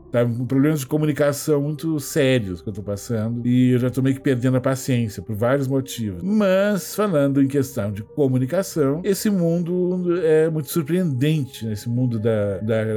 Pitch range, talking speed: 115-145 Hz, 185 wpm